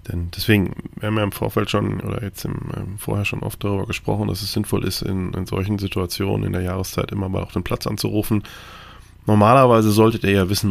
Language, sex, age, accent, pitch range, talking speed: German, male, 20-39, German, 90-105 Hz, 225 wpm